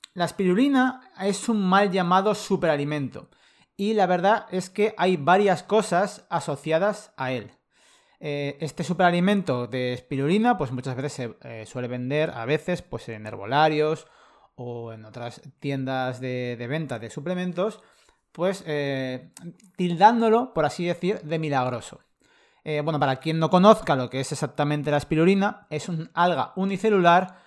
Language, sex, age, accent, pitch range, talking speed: Spanish, male, 30-49, Spanish, 135-180 Hz, 150 wpm